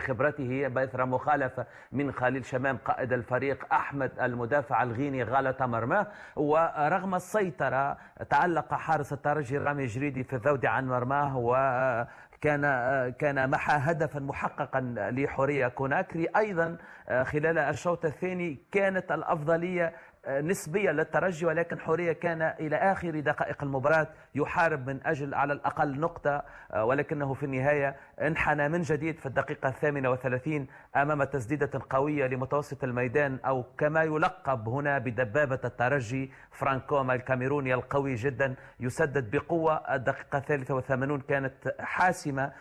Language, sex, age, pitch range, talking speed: Arabic, male, 40-59, 130-155 Hz, 120 wpm